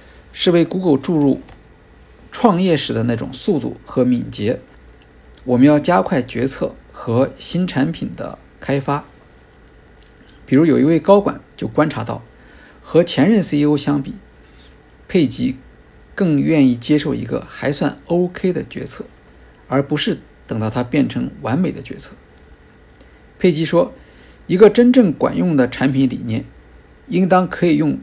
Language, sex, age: Chinese, male, 50-69